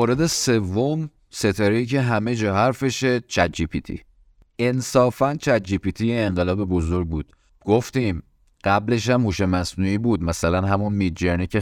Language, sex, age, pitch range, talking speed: Persian, male, 30-49, 90-110 Hz, 135 wpm